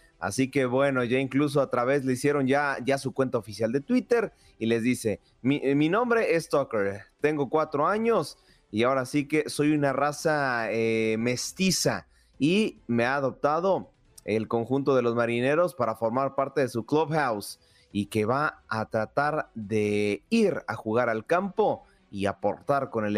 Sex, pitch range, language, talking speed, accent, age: male, 115-150 Hz, Spanish, 170 wpm, Mexican, 30-49